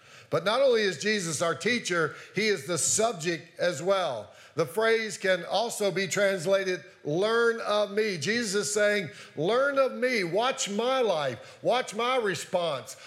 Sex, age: male, 50-69